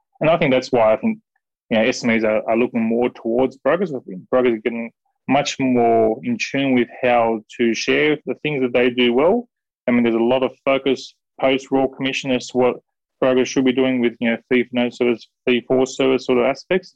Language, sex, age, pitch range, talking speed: English, male, 20-39, 115-135 Hz, 220 wpm